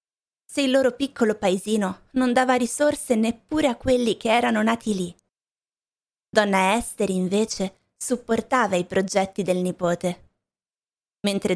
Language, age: Italian, 20-39